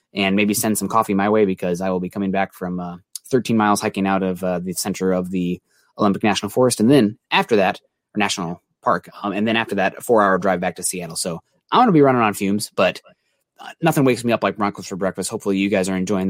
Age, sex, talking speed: 20-39, male, 260 wpm